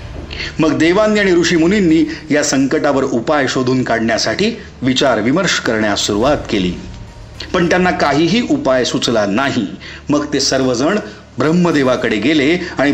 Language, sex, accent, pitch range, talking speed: Marathi, male, native, 125-165 Hz, 120 wpm